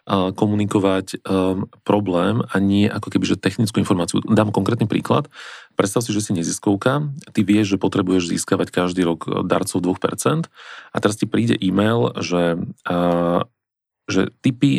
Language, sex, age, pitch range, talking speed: Slovak, male, 40-59, 95-110 Hz, 145 wpm